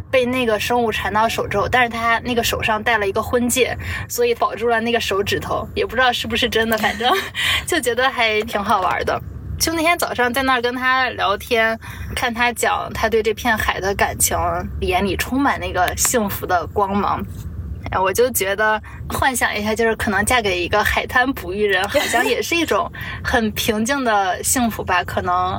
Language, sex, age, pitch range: Chinese, female, 10-29, 205-255 Hz